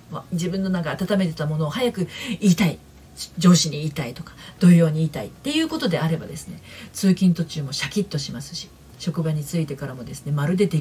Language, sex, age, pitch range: Japanese, female, 40-59, 150-205 Hz